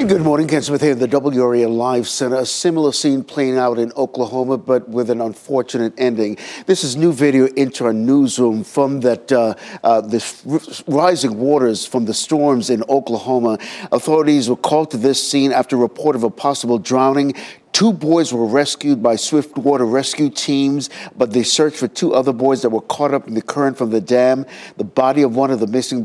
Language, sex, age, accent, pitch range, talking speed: English, male, 60-79, American, 120-155 Hz, 200 wpm